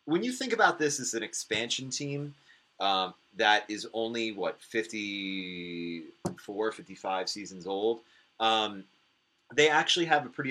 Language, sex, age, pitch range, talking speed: English, male, 30-49, 90-120 Hz, 135 wpm